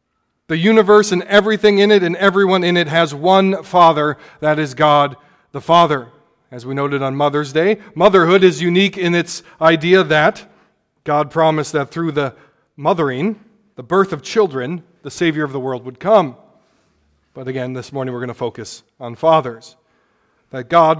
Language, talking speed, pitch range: English, 170 wpm, 140-180 Hz